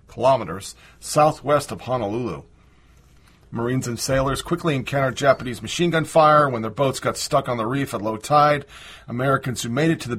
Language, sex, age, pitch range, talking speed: English, male, 40-59, 115-140 Hz, 175 wpm